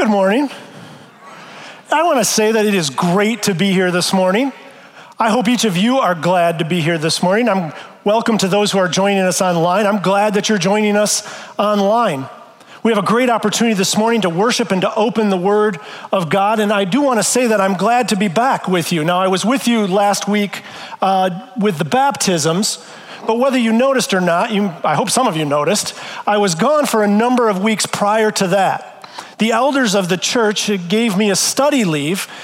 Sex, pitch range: male, 195-235 Hz